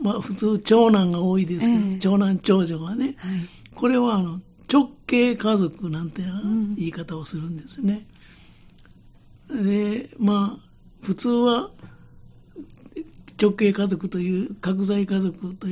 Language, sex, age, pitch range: Japanese, male, 60-79, 185-220 Hz